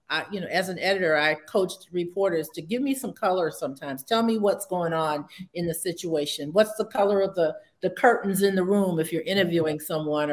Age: 40-59